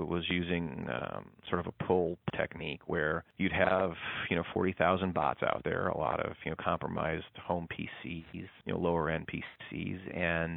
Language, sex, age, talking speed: English, male, 40-59, 170 wpm